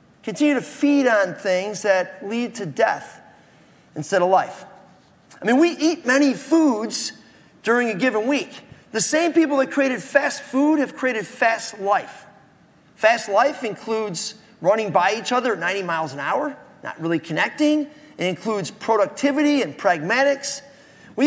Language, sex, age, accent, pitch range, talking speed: English, male, 30-49, American, 215-295 Hz, 150 wpm